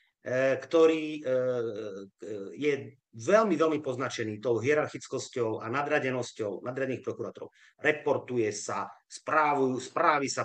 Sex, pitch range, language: male, 125-165 Hz, Slovak